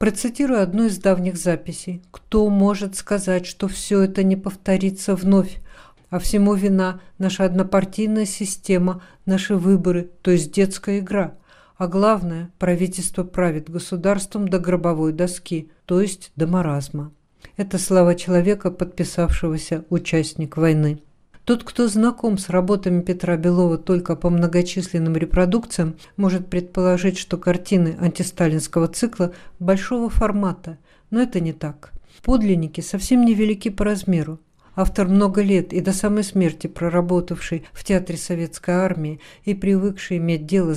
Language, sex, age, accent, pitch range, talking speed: Russian, female, 50-69, native, 170-200 Hz, 130 wpm